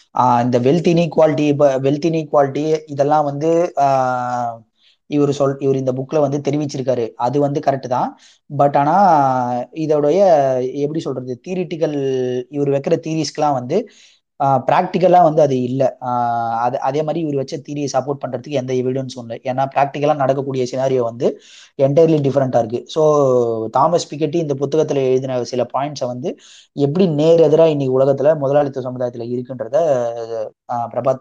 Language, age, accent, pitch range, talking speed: Tamil, 20-39, native, 125-145 Hz, 130 wpm